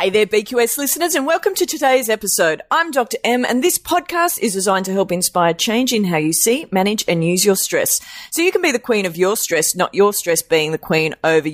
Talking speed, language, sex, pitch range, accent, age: 240 wpm, English, female, 155-225 Hz, Australian, 30-49